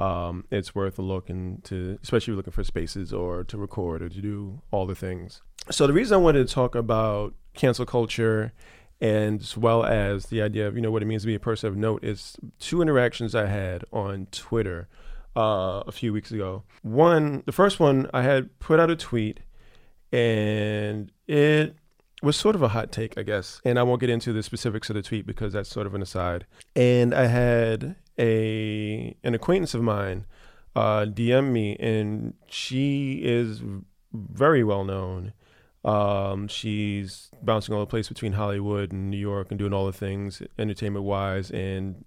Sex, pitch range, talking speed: male, 100-120 Hz, 190 wpm